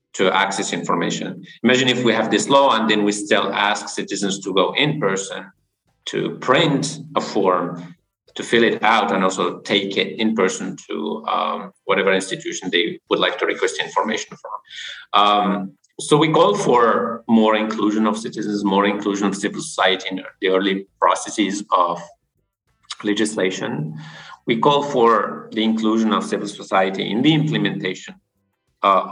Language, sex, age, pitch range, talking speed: English, male, 50-69, 95-110 Hz, 155 wpm